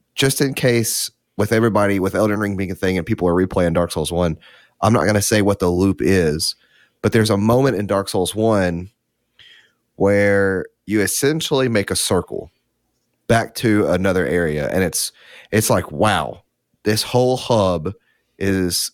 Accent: American